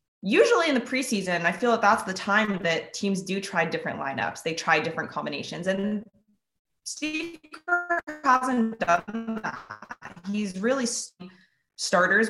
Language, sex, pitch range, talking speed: English, female, 160-195 Hz, 140 wpm